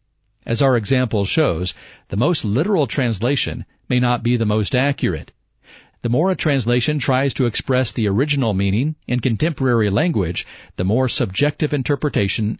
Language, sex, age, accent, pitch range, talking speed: English, male, 50-69, American, 110-135 Hz, 150 wpm